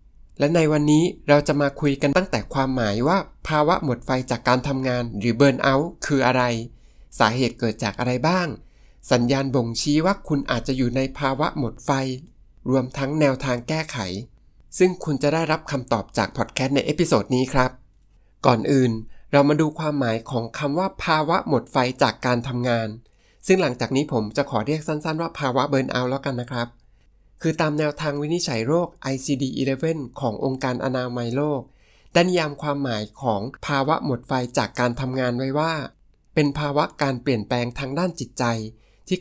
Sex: male